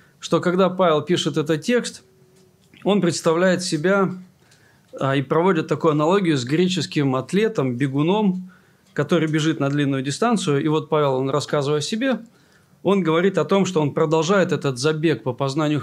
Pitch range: 140-180 Hz